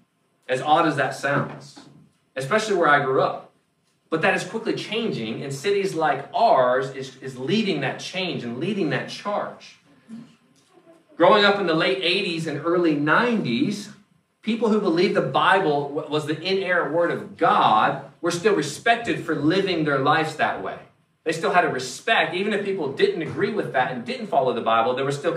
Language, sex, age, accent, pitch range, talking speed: English, male, 30-49, American, 150-205 Hz, 180 wpm